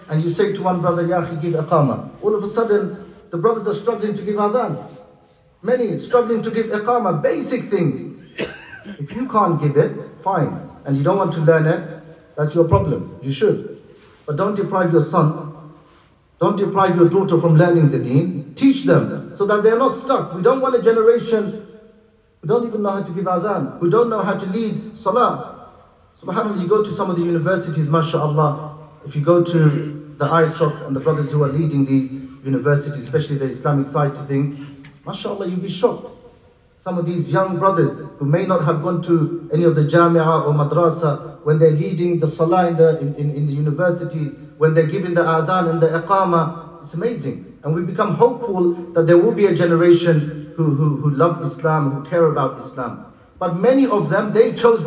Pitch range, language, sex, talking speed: 155-200 Hz, English, male, 200 wpm